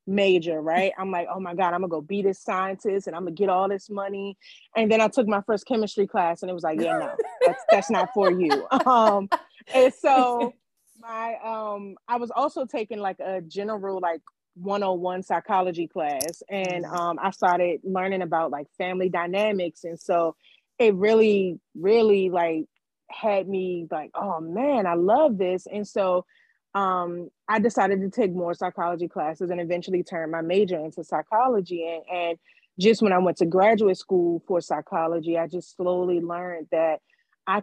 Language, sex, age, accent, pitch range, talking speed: English, female, 30-49, American, 170-205 Hz, 180 wpm